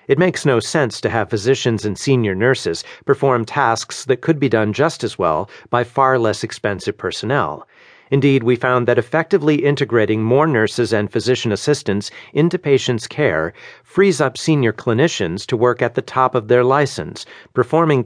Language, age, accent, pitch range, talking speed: English, 50-69, American, 115-145 Hz, 170 wpm